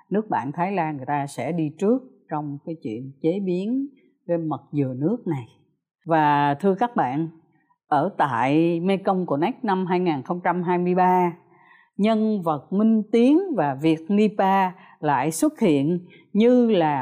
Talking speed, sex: 145 wpm, female